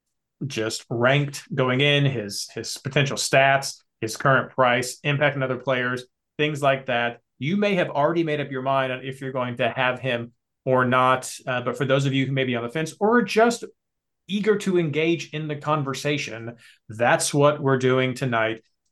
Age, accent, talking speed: 30-49, American, 195 wpm